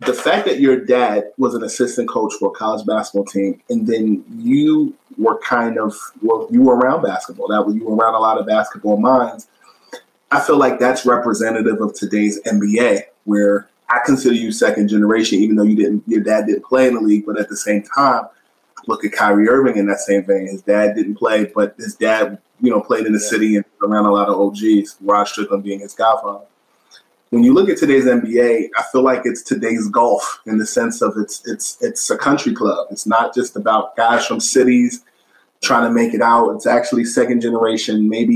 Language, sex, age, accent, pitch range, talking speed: English, male, 20-39, American, 105-125 Hz, 215 wpm